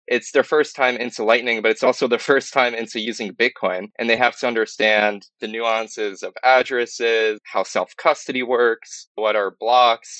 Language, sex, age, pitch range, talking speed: English, male, 20-39, 110-135 Hz, 175 wpm